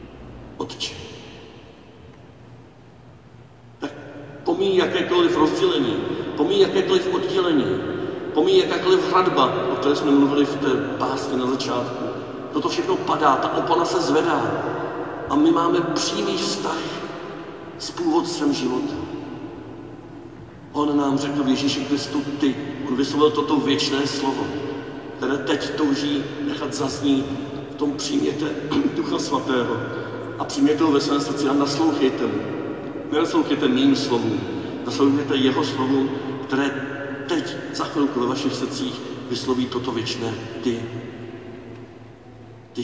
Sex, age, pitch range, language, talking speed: male, 50-69, 115-150 Hz, Czech, 115 wpm